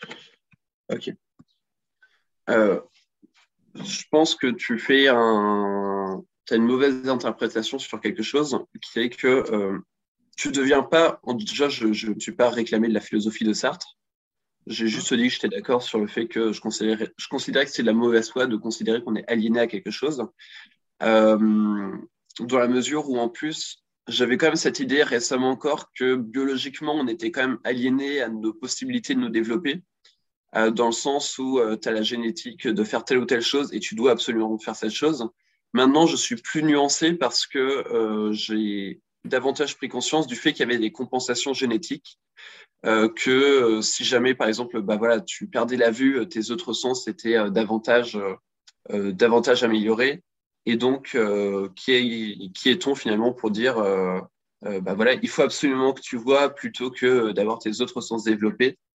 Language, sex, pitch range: French, male, 110-135 Hz